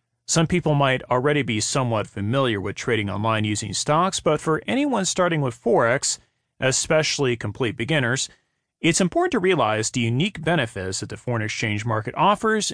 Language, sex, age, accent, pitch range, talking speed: English, male, 30-49, American, 115-170 Hz, 160 wpm